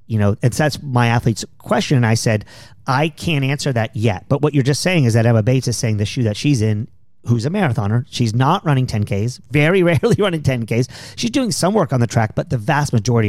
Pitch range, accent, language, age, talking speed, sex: 110-135 Hz, American, English, 40-59, 240 wpm, male